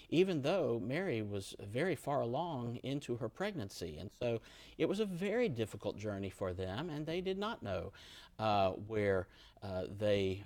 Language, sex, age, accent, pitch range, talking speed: English, male, 50-69, American, 95-120 Hz, 165 wpm